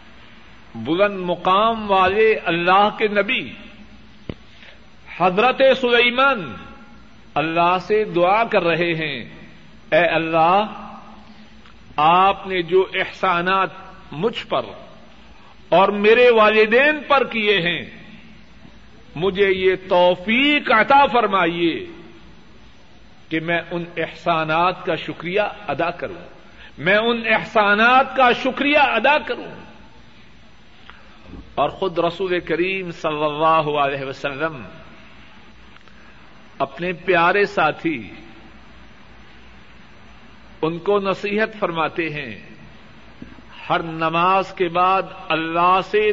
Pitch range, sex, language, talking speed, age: 170-215 Hz, male, Urdu, 90 wpm, 50-69